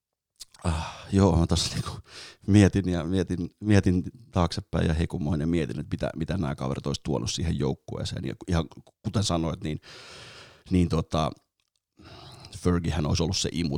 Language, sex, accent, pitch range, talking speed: Finnish, male, native, 80-95 Hz, 150 wpm